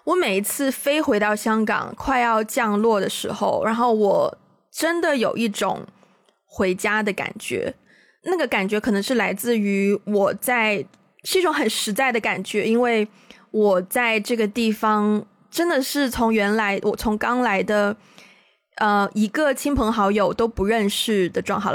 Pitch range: 200-235 Hz